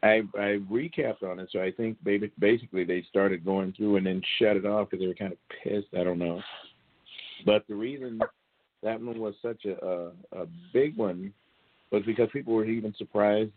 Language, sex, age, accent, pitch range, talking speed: English, male, 50-69, American, 95-115 Hz, 195 wpm